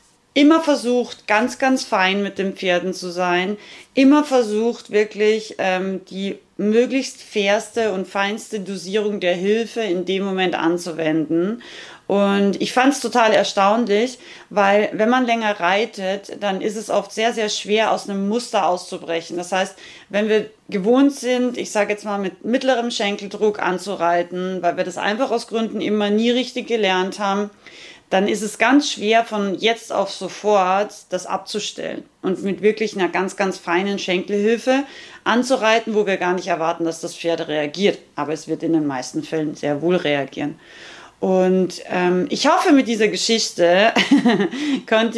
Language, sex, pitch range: German, female, 185-230 Hz